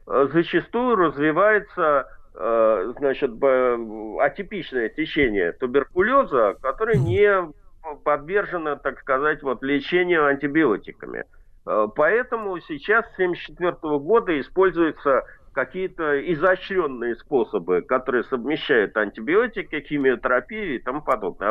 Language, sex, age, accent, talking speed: Russian, male, 50-69, native, 80 wpm